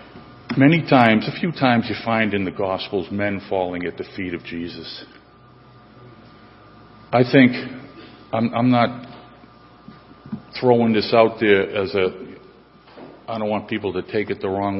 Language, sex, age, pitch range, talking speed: English, male, 50-69, 105-135 Hz, 150 wpm